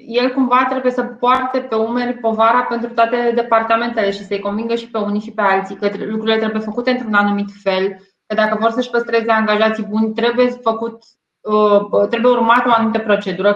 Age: 20-39